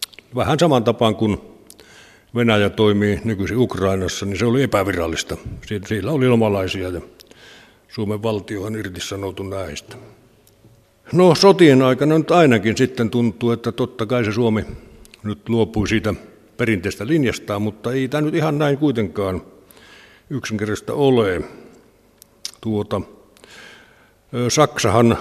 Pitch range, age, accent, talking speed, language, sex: 110-125 Hz, 60-79, native, 120 wpm, Finnish, male